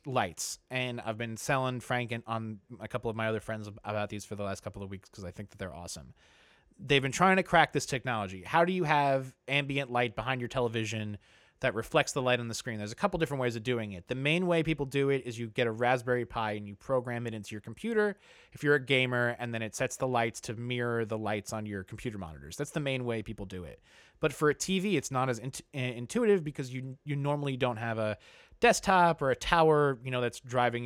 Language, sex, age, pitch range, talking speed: English, male, 30-49, 110-140 Hz, 245 wpm